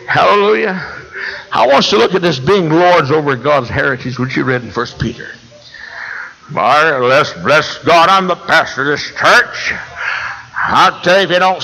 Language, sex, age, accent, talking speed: English, male, 60-79, American, 185 wpm